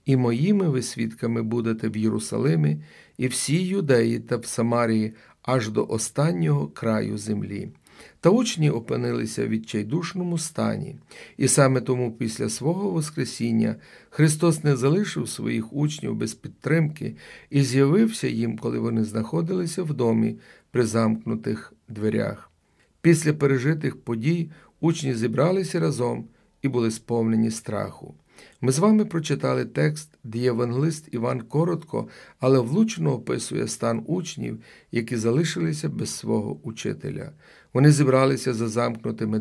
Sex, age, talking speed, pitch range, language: male, 40-59, 120 wpm, 115-160 Hz, Ukrainian